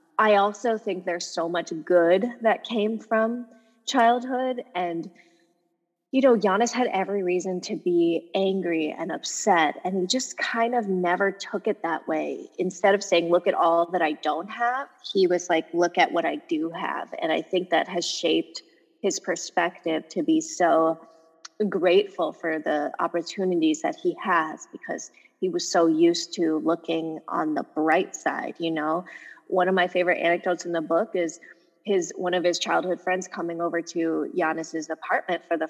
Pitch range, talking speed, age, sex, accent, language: 170-205 Hz, 175 wpm, 20-39, female, American, English